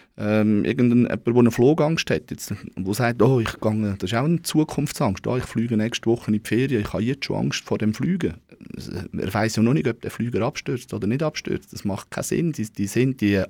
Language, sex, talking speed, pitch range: German, male, 230 wpm, 105-135 Hz